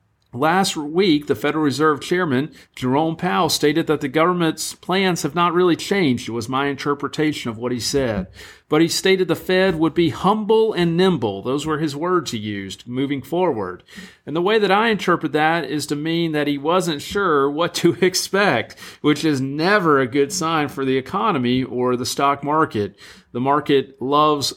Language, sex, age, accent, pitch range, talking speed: English, male, 40-59, American, 130-180 Hz, 185 wpm